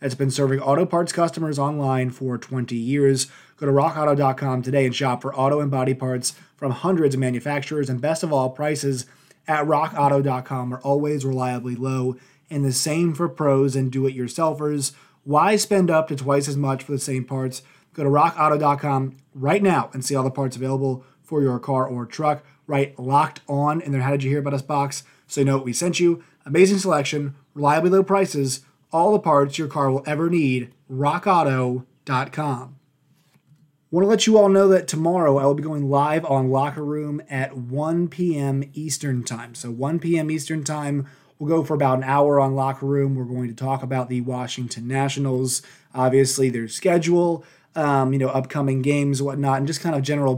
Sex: male